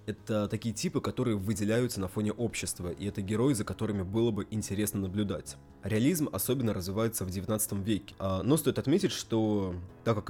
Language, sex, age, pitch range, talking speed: English, male, 20-39, 95-115 Hz, 170 wpm